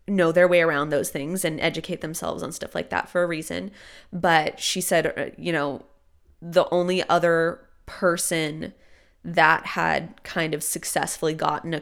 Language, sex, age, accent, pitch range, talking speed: English, female, 20-39, American, 165-190 Hz, 160 wpm